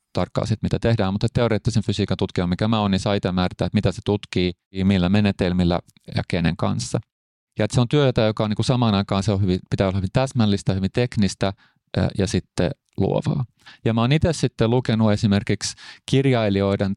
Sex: male